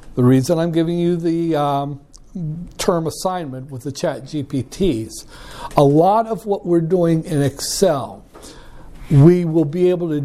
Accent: American